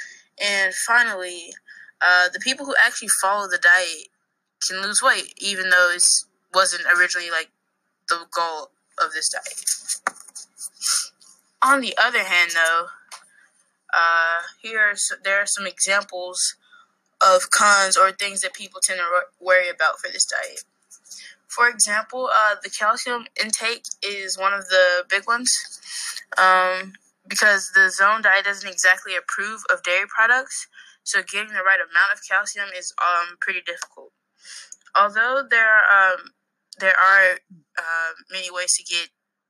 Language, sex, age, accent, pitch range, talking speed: English, female, 10-29, American, 180-225 Hz, 140 wpm